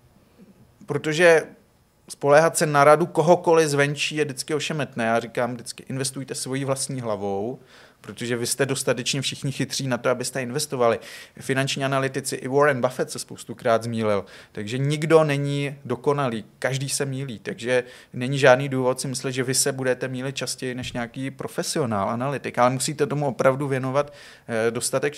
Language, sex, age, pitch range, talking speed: Czech, male, 30-49, 125-145 Hz, 155 wpm